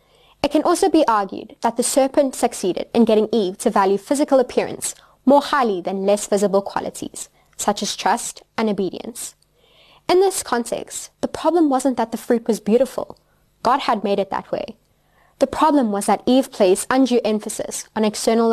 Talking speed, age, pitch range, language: 175 wpm, 20-39, 210-265 Hz, English